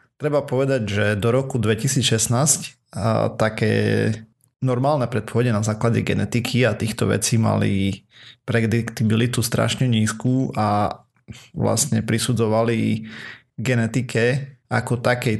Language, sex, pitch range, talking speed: Slovak, male, 110-125 Hz, 100 wpm